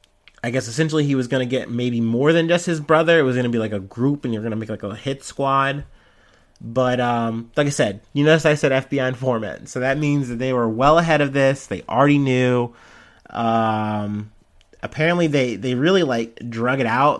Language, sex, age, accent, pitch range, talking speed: English, male, 30-49, American, 115-145 Hz, 225 wpm